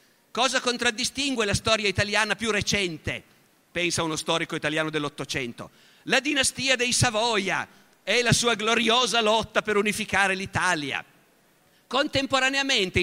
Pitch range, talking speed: 170-230 Hz, 115 wpm